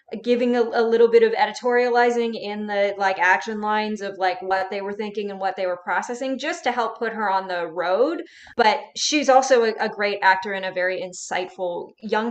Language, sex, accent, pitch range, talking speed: English, female, American, 185-240 Hz, 210 wpm